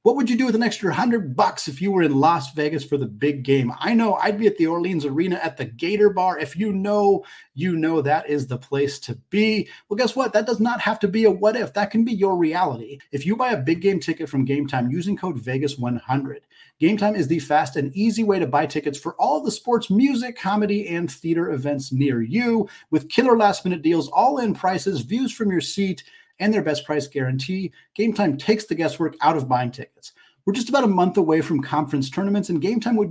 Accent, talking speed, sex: American, 235 wpm, male